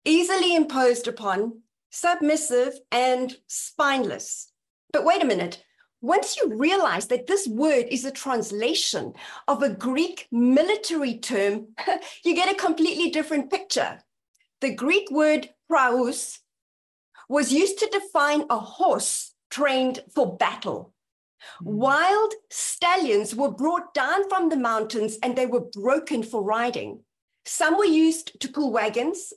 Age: 50-69